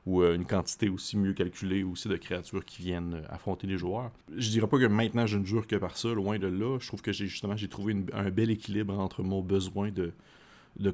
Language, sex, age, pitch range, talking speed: French, male, 30-49, 90-110 Hz, 245 wpm